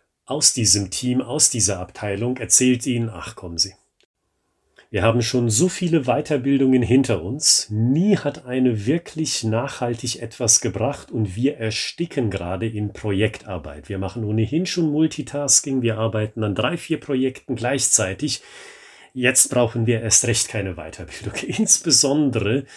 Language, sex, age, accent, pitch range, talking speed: German, male, 40-59, German, 110-140 Hz, 135 wpm